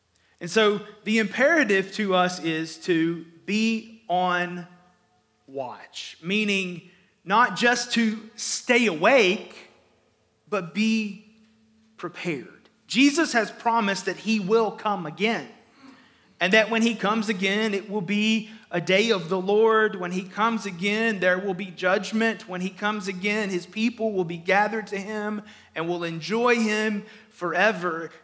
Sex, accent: male, American